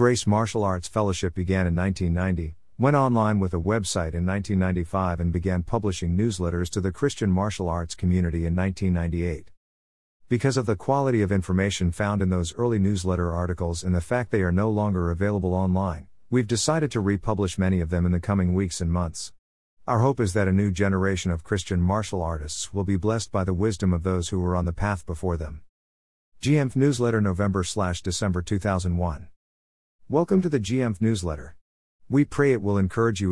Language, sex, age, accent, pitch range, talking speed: English, male, 50-69, American, 85-110 Hz, 180 wpm